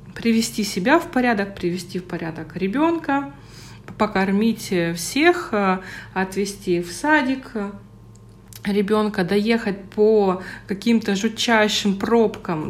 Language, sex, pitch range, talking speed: Russian, female, 180-245 Hz, 90 wpm